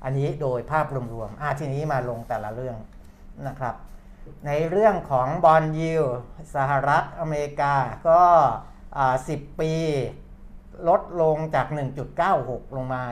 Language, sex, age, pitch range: Thai, male, 60-79, 125-155 Hz